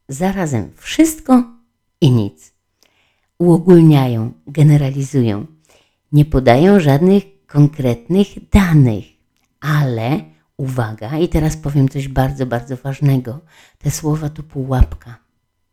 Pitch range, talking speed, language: 115-155 Hz, 90 wpm, Polish